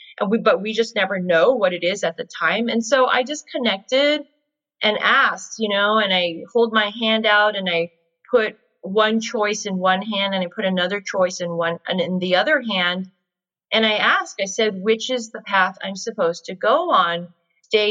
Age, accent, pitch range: 30-49, American, 185-240 Hz